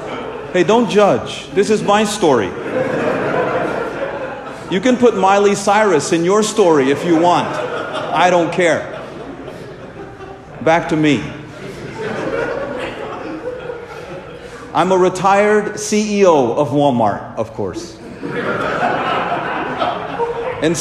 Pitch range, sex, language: 130-200 Hz, male, English